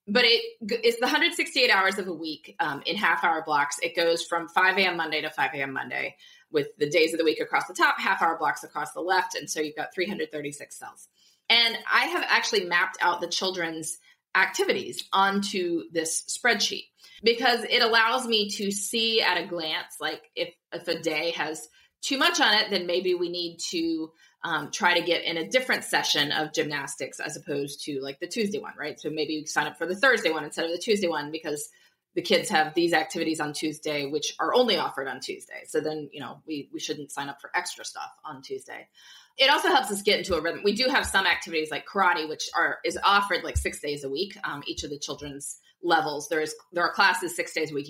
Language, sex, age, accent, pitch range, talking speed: English, female, 20-39, American, 155-230 Hz, 220 wpm